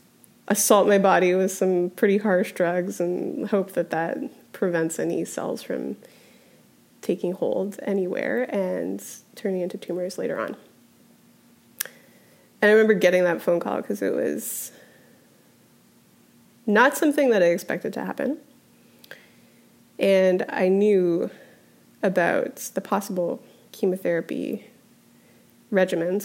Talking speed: 115 wpm